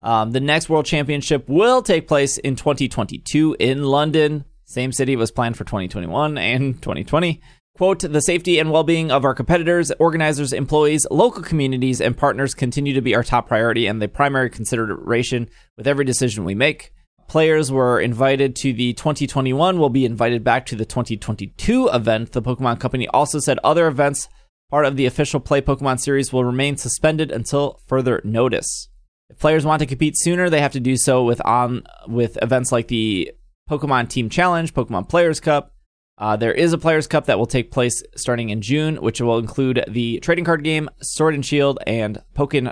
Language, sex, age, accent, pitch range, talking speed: English, male, 20-39, American, 120-150 Hz, 185 wpm